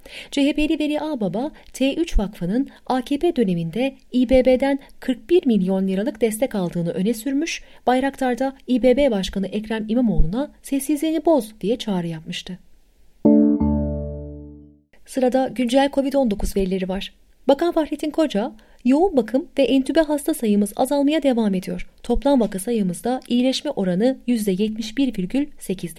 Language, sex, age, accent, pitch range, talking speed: Turkish, female, 30-49, native, 190-275 Hz, 110 wpm